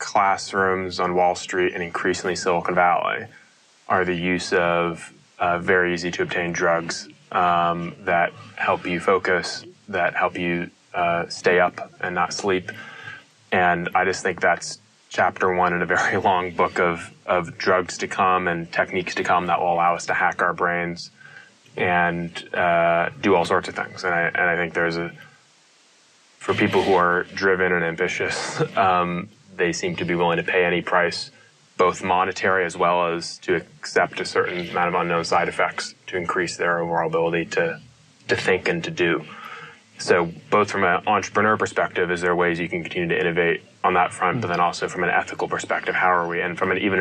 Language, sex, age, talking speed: English, male, 20-39, 190 wpm